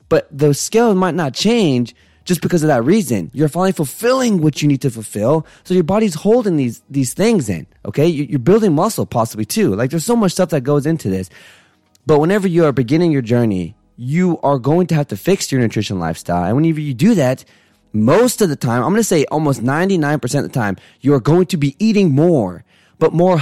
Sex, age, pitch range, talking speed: male, 20-39, 115-165 Hz, 215 wpm